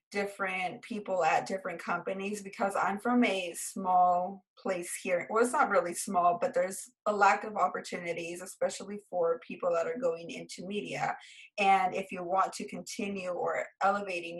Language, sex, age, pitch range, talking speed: English, female, 20-39, 185-230 Hz, 165 wpm